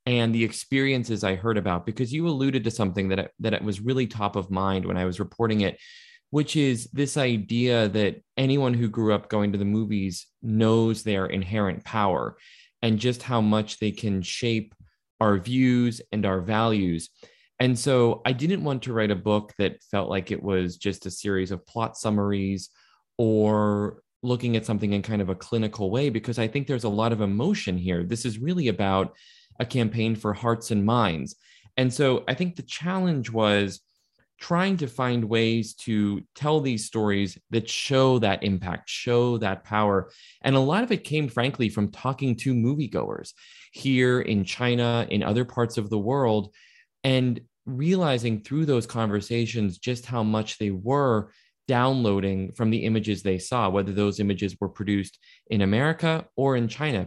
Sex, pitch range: male, 105-125 Hz